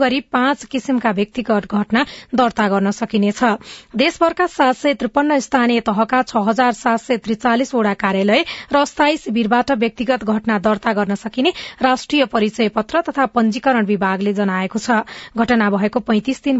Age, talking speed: 30-49, 120 wpm